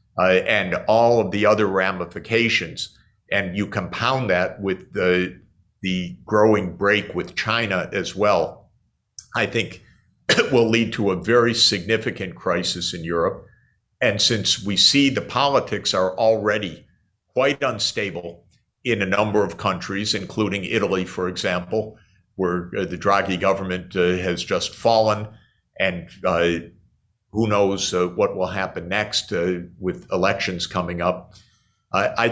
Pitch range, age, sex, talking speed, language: 90-110 Hz, 50-69, male, 135 wpm, Czech